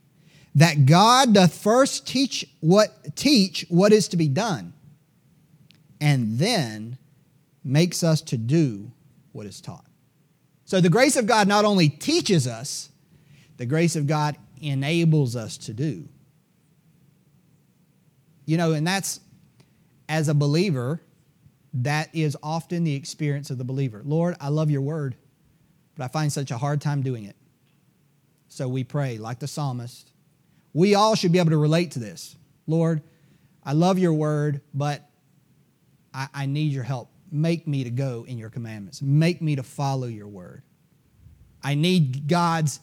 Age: 40-59